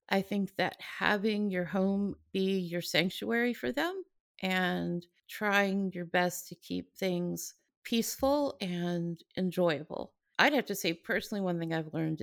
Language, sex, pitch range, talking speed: English, female, 170-195 Hz, 145 wpm